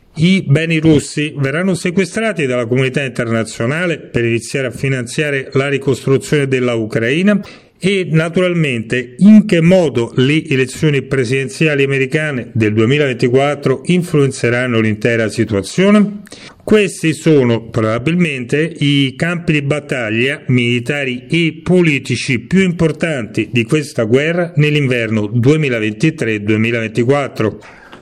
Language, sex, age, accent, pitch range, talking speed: Italian, male, 40-59, native, 125-160 Hz, 100 wpm